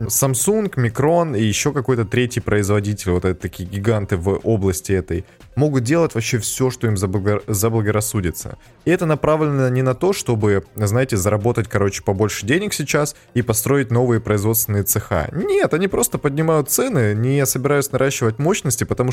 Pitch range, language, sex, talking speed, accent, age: 105-135 Hz, Russian, male, 155 wpm, native, 20-39